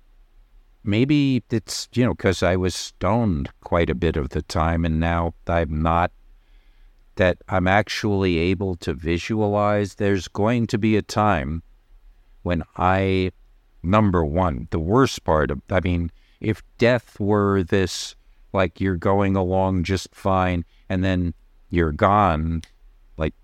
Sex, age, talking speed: male, 60-79, 140 wpm